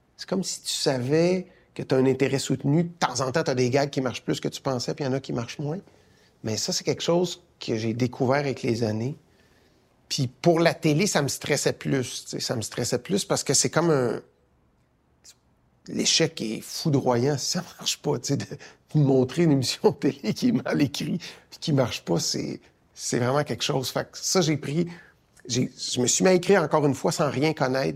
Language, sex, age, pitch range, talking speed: French, male, 50-69, 125-160 Hz, 225 wpm